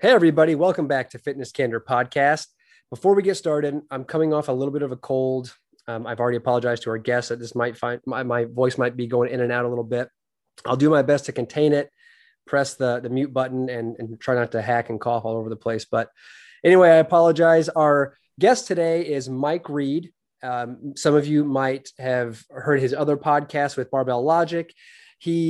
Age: 30-49